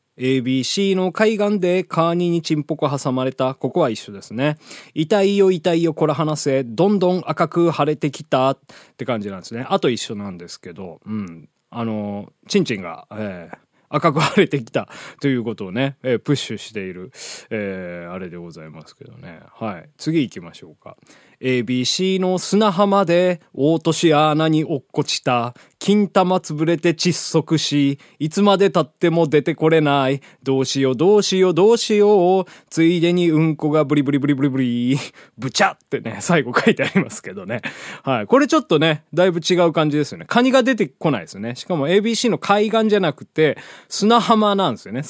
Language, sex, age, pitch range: Japanese, male, 20-39, 130-185 Hz